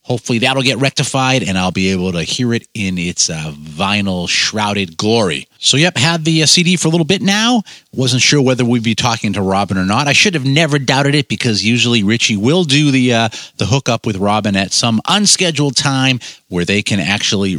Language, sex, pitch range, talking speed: English, male, 95-140 Hz, 215 wpm